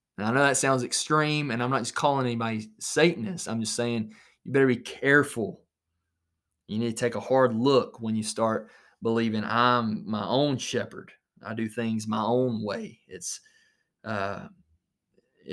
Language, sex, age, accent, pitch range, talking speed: English, male, 20-39, American, 110-140 Hz, 165 wpm